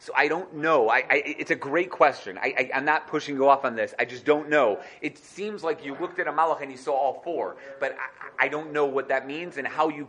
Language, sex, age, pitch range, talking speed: English, male, 30-49, 150-210 Hz, 255 wpm